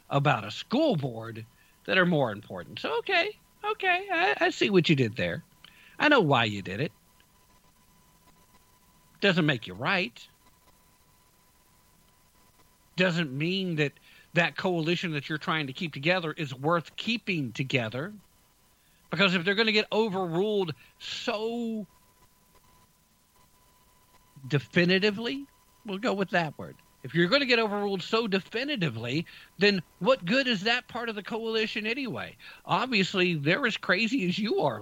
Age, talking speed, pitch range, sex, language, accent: 50-69, 140 wpm, 145-195 Hz, male, English, American